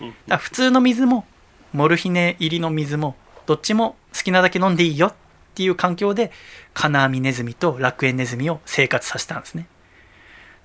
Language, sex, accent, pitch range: Japanese, male, native, 130-200 Hz